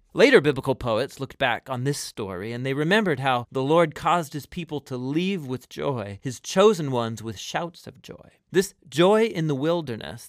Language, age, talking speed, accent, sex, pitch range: English, 40-59, 195 wpm, American, male, 125-170 Hz